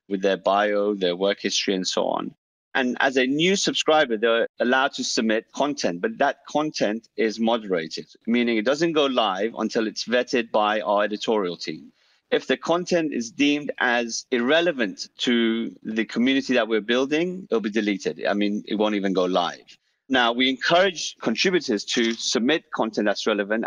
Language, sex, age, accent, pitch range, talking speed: English, male, 40-59, British, 105-140 Hz, 170 wpm